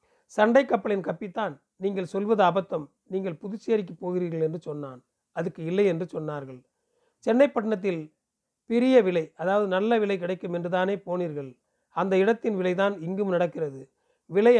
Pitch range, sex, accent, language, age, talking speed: 165-210 Hz, male, native, Tamil, 40-59, 125 wpm